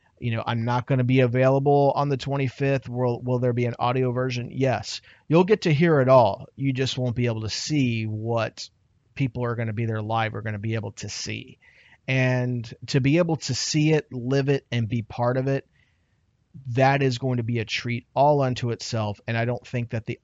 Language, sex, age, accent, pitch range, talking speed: English, male, 30-49, American, 115-145 Hz, 230 wpm